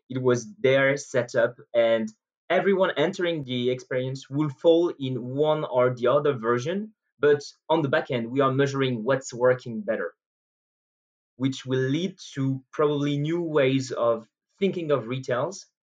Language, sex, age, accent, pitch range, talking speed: English, male, 20-39, French, 120-155 Hz, 150 wpm